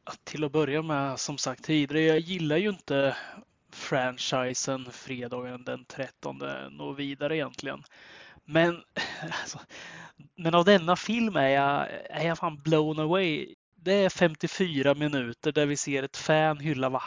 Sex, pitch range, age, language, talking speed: male, 140-170 Hz, 20-39, Swedish, 150 wpm